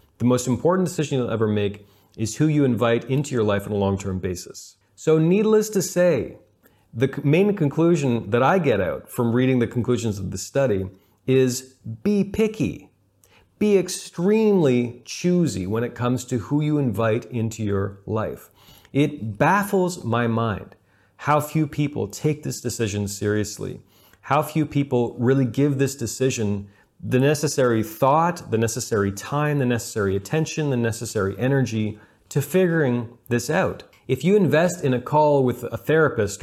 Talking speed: 155 wpm